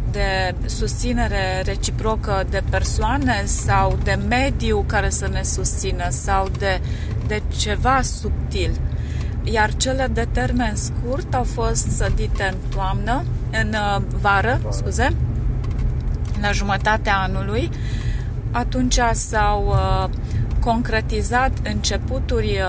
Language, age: Romanian, 30-49